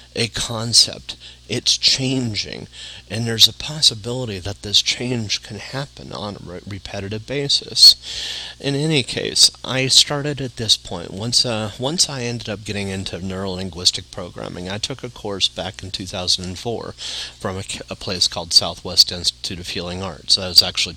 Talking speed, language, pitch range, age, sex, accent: 160 wpm, English, 90-110 Hz, 40-59, male, American